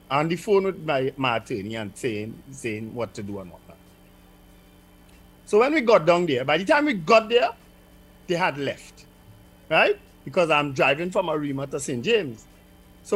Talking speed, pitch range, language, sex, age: 185 wpm, 95-155 Hz, English, male, 50-69